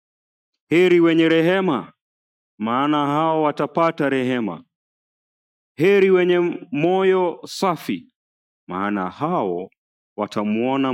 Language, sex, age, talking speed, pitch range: English, male, 40-59, 75 wpm, 125-170 Hz